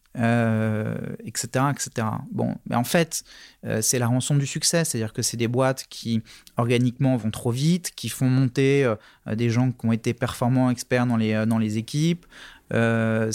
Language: French